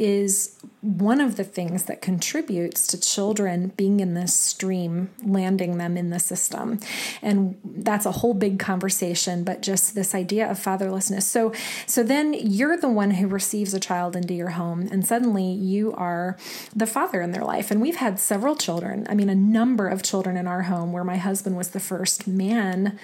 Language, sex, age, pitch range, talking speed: English, female, 20-39, 185-220 Hz, 190 wpm